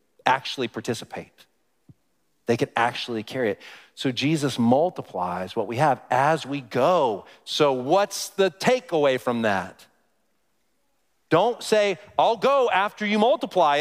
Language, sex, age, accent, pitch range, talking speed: English, male, 40-59, American, 110-150 Hz, 125 wpm